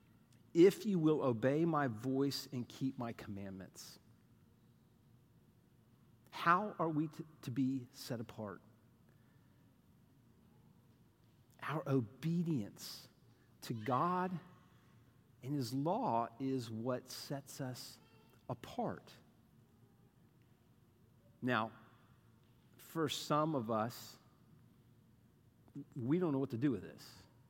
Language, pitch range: English, 120-170 Hz